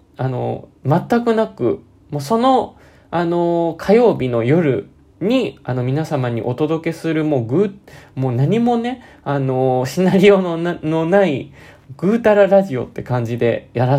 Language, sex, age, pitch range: Japanese, male, 20-39, 135-200 Hz